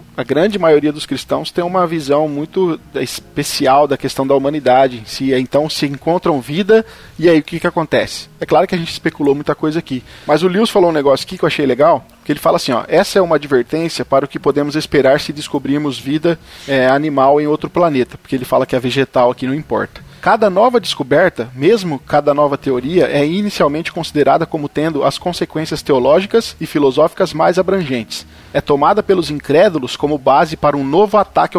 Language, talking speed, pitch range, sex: Portuguese, 200 wpm, 140-180 Hz, male